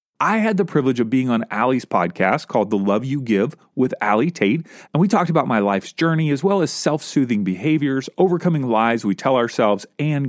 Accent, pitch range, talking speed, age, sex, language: American, 125-185 Hz, 205 wpm, 40-59, male, English